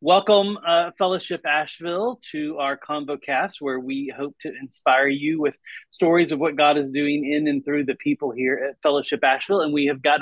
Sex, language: male, English